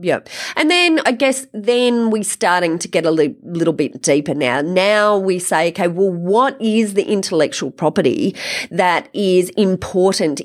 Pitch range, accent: 170-220 Hz, Australian